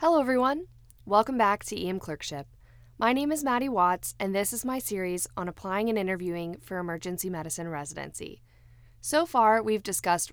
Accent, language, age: American, English, 10-29